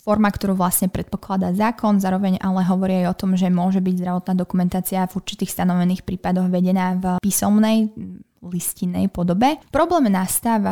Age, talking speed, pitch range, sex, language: 20-39, 145 wpm, 185-210 Hz, female, Slovak